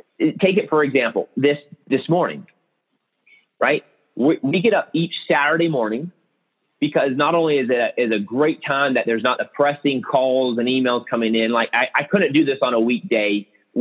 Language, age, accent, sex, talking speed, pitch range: English, 30-49, American, male, 185 wpm, 120-175 Hz